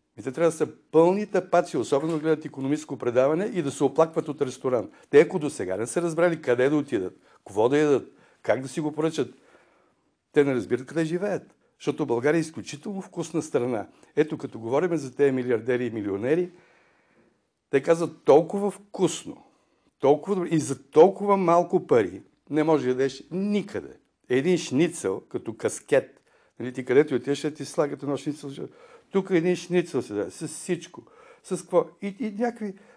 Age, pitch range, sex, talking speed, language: 60-79, 135-180 Hz, male, 165 wpm, Bulgarian